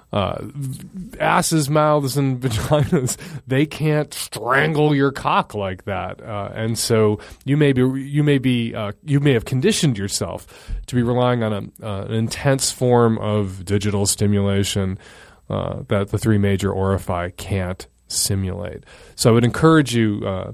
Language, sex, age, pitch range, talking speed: English, male, 30-49, 100-140 Hz, 160 wpm